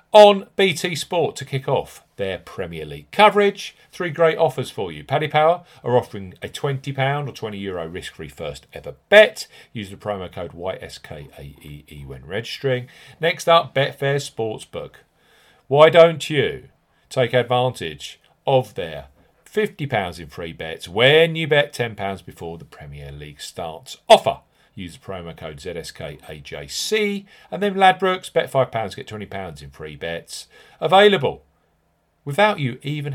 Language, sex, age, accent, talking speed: English, male, 40-59, British, 145 wpm